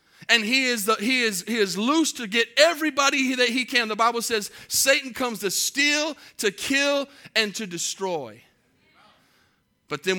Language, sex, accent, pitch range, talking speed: English, male, American, 200-240 Hz, 175 wpm